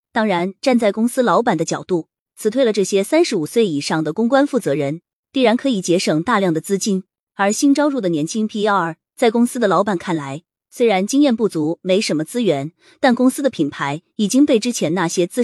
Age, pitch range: 20-39, 165-235 Hz